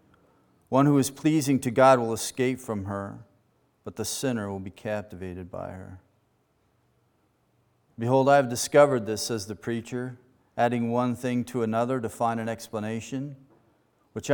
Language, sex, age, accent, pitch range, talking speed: English, male, 40-59, American, 105-130 Hz, 150 wpm